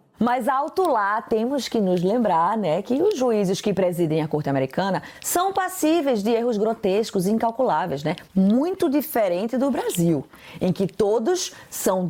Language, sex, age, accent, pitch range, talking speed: Portuguese, female, 20-39, Brazilian, 195-275 Hz, 155 wpm